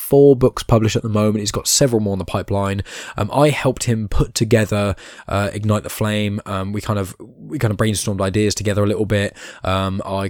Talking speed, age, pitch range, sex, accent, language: 220 wpm, 10-29, 100-115 Hz, male, British, English